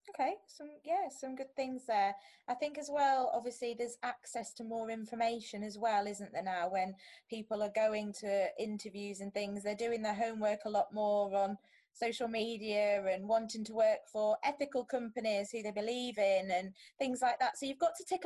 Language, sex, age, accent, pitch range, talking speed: English, female, 20-39, British, 205-260 Hz, 195 wpm